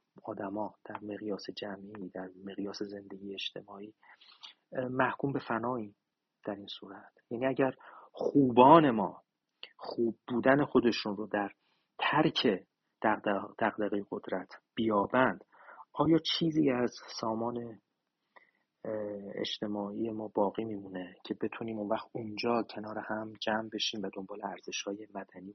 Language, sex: Persian, male